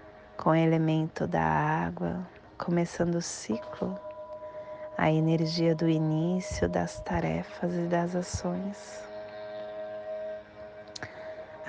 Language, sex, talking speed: English, female, 85 wpm